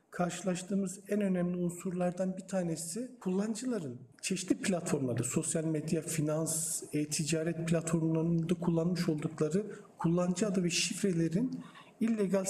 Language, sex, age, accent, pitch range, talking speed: Turkish, male, 50-69, native, 165-205 Hz, 100 wpm